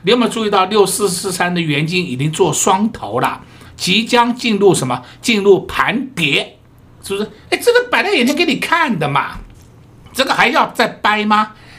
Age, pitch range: 60-79, 170-245 Hz